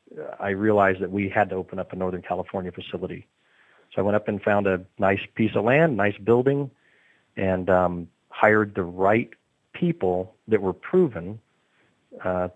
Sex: male